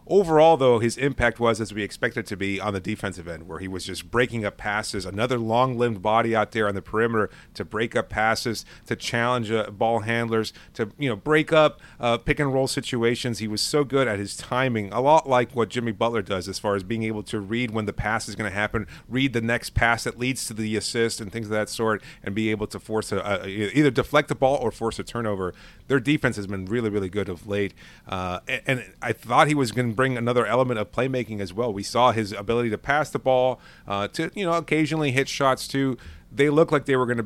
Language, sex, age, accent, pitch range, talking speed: English, male, 30-49, American, 105-130 Hz, 245 wpm